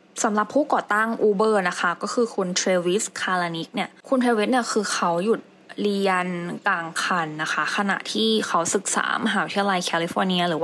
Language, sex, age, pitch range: English, female, 10-29, 185-230 Hz